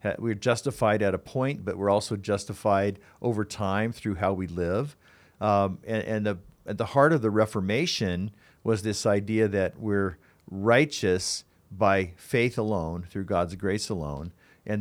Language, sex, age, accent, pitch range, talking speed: English, male, 50-69, American, 100-120 Hz, 160 wpm